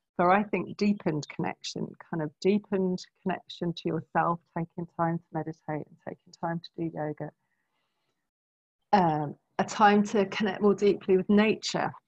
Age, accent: 40-59, British